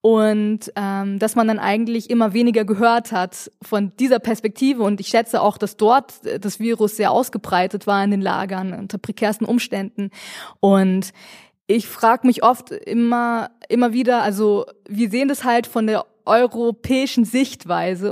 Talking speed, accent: 155 wpm, German